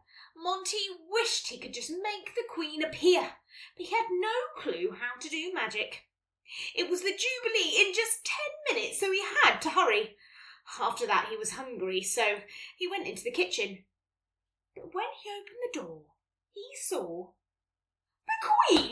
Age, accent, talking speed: 20-39, British, 165 wpm